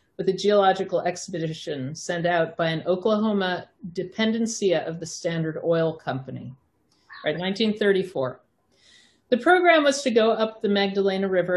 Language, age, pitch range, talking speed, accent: English, 50-69, 170-205 Hz, 135 wpm, American